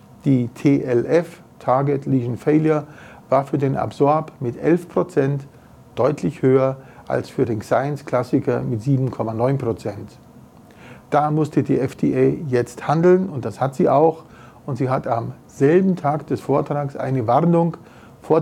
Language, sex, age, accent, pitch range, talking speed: English, male, 50-69, German, 125-155 Hz, 135 wpm